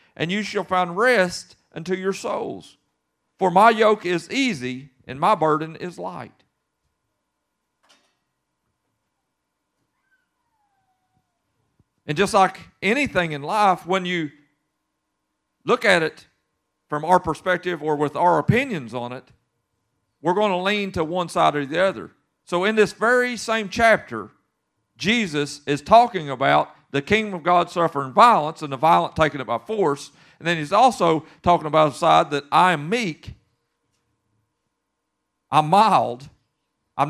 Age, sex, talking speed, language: 50-69, male, 140 wpm, English